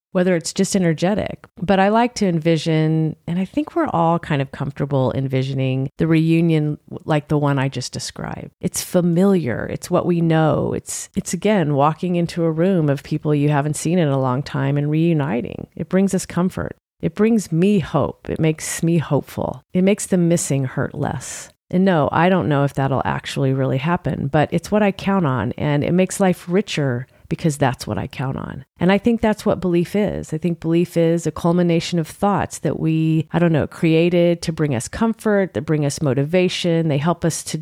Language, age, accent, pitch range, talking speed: English, 40-59, American, 150-185 Hz, 205 wpm